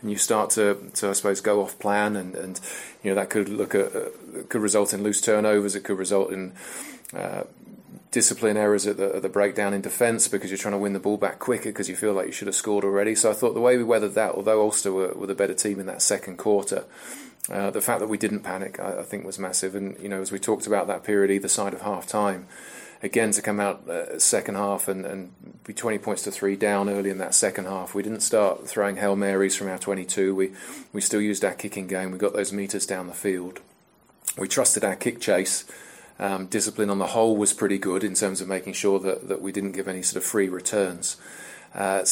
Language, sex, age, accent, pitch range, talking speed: English, male, 30-49, British, 95-105 Hz, 245 wpm